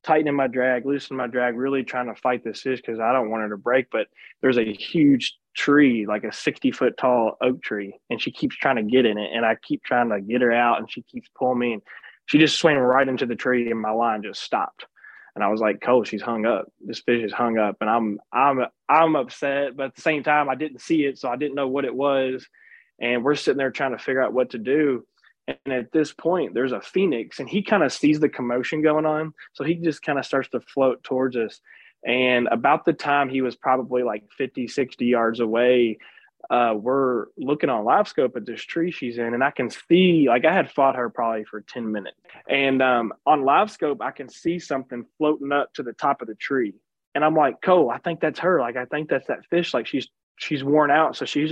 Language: English